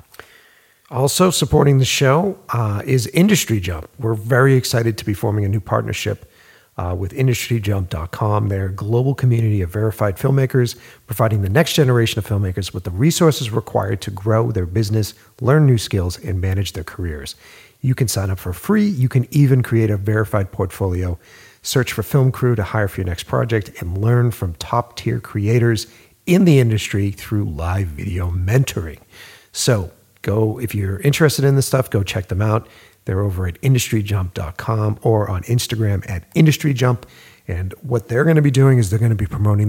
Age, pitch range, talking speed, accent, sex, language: 50-69, 95-125 Hz, 175 wpm, American, male, English